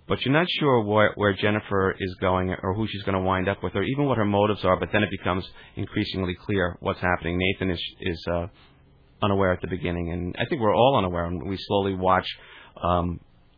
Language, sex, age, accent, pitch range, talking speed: English, male, 30-49, American, 90-110 Hz, 220 wpm